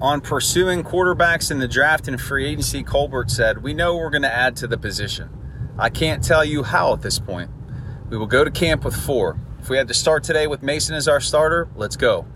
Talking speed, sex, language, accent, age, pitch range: 235 wpm, male, English, American, 30-49, 115-140 Hz